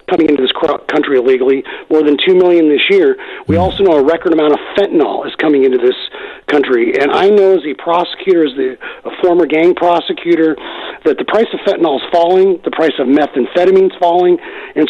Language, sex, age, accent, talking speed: English, male, 40-59, American, 195 wpm